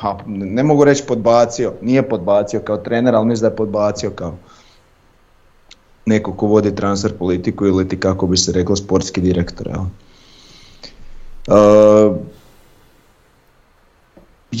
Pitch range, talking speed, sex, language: 95-115 Hz, 125 wpm, male, Croatian